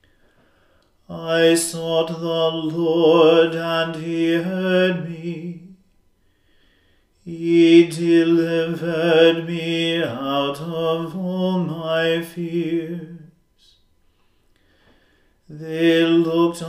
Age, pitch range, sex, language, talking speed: 40-59, 160-170 Hz, male, English, 65 wpm